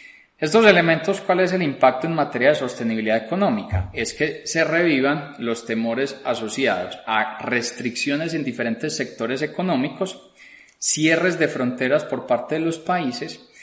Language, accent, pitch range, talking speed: Spanish, Colombian, 110-145 Hz, 140 wpm